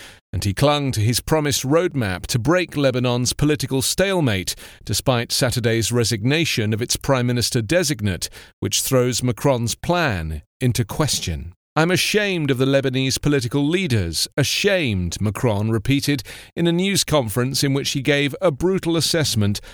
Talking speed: 140 wpm